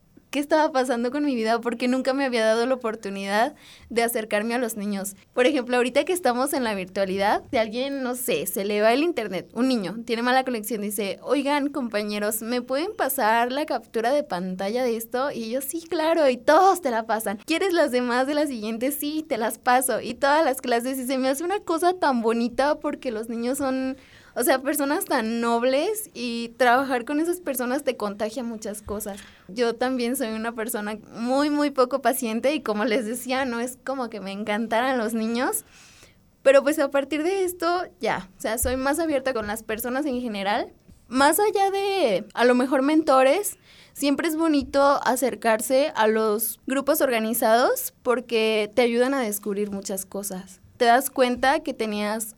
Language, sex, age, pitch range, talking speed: Spanish, female, 20-39, 225-280 Hz, 190 wpm